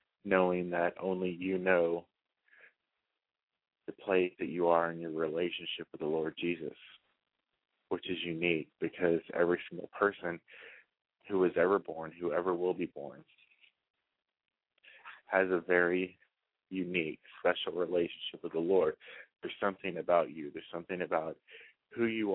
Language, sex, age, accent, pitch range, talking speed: English, male, 30-49, American, 85-95 Hz, 135 wpm